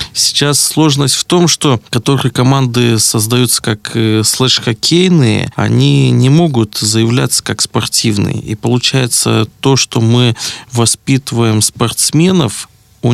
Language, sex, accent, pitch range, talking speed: Russian, male, native, 110-125 Hz, 110 wpm